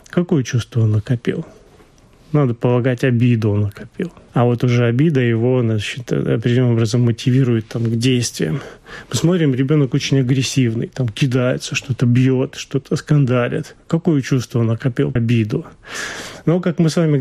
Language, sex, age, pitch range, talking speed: Russian, male, 30-49, 130-165 Hz, 140 wpm